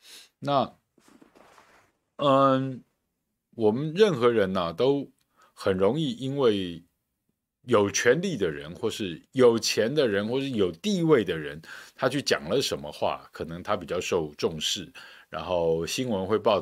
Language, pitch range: Chinese, 90-135 Hz